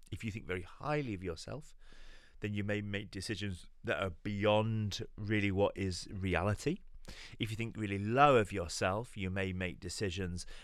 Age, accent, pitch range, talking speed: 30-49, British, 95-125 Hz, 170 wpm